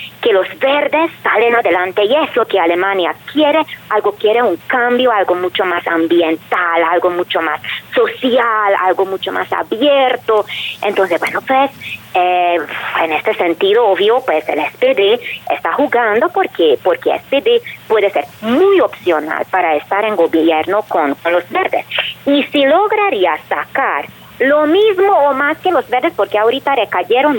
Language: Spanish